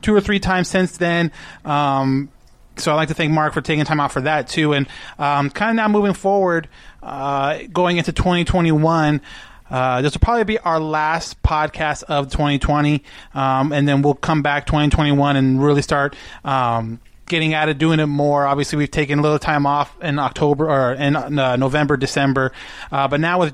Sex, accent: male, American